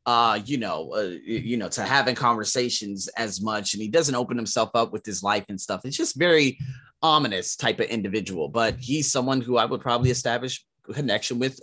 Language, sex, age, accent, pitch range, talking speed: English, male, 30-49, American, 125-160 Hz, 200 wpm